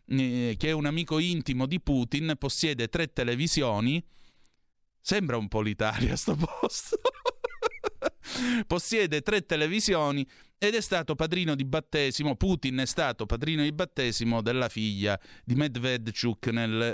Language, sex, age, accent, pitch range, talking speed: Italian, male, 30-49, native, 115-165 Hz, 130 wpm